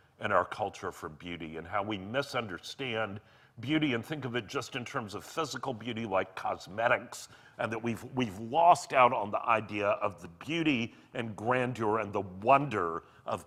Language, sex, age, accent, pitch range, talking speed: English, male, 50-69, American, 105-140 Hz, 180 wpm